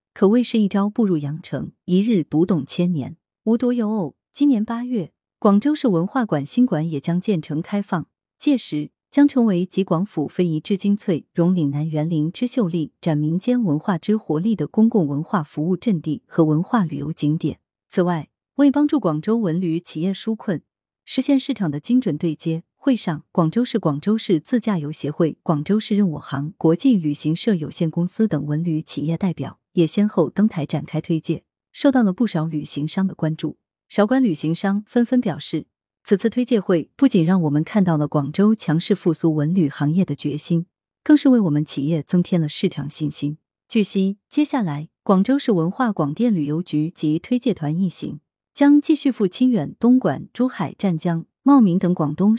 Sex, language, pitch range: female, Chinese, 155-220 Hz